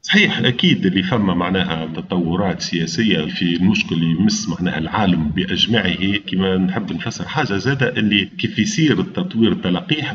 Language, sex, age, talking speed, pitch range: Arabic, male, 40-59, 135 wpm, 105-175 Hz